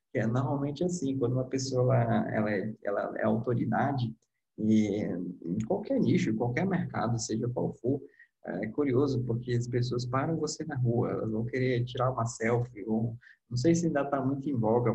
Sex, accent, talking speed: male, Brazilian, 185 wpm